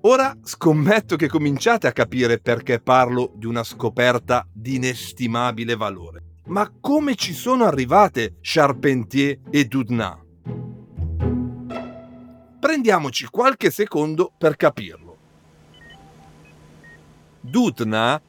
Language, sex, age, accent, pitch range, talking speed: Italian, male, 50-69, native, 125-195 Hz, 90 wpm